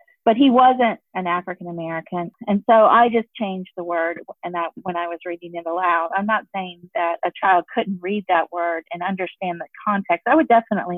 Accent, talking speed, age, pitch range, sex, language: American, 210 wpm, 40-59, 185-235 Hz, female, English